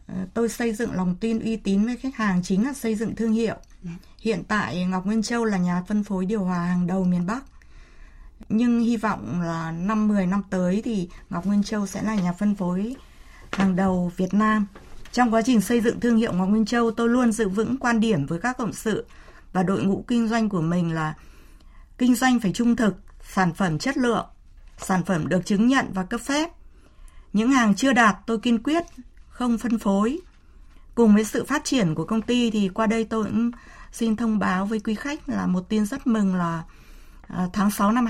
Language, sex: Vietnamese, female